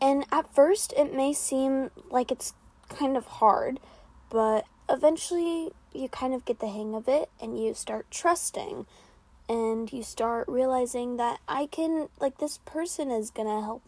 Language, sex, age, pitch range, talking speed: English, female, 10-29, 235-300 Hz, 170 wpm